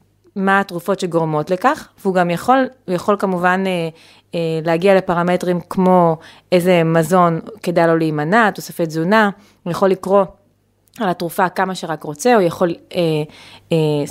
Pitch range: 165-195 Hz